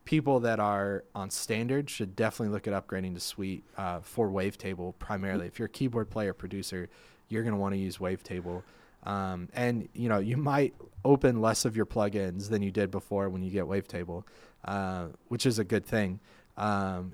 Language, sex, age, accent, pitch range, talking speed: English, male, 30-49, American, 95-110 Hz, 195 wpm